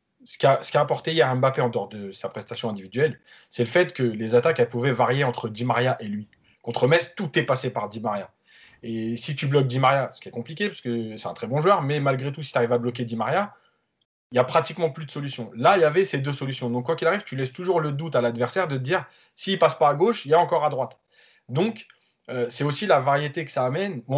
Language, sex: French, male